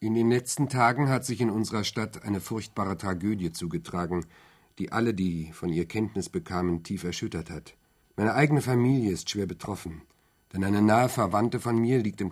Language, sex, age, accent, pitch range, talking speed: German, male, 50-69, German, 85-110 Hz, 180 wpm